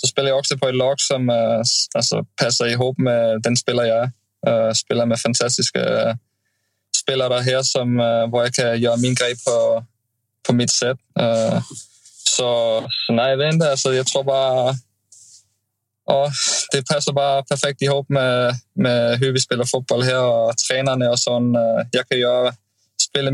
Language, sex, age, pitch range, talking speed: Swedish, male, 20-39, 115-130 Hz, 180 wpm